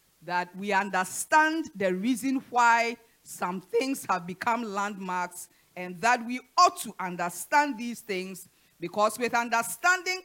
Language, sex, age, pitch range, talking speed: English, female, 40-59, 180-245 Hz, 130 wpm